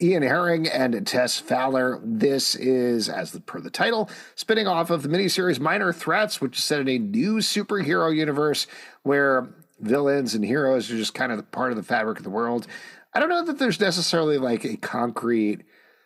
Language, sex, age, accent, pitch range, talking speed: English, male, 50-69, American, 110-180 Hz, 185 wpm